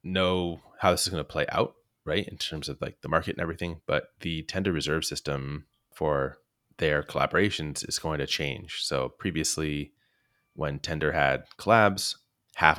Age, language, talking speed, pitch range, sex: 30-49, English, 170 wpm, 75-90 Hz, male